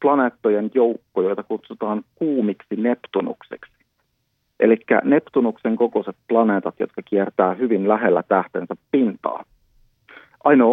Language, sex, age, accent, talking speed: Finnish, male, 40-59, native, 95 wpm